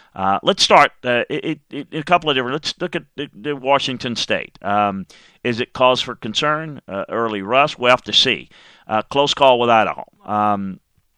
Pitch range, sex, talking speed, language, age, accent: 100-115 Hz, male, 200 wpm, English, 40-59, American